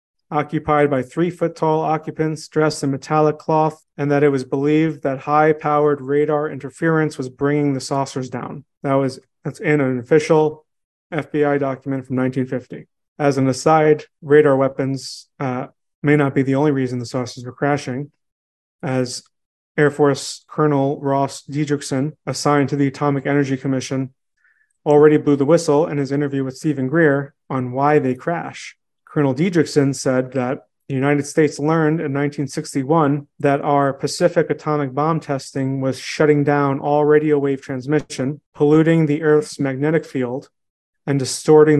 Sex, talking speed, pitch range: male, 150 wpm, 135-155 Hz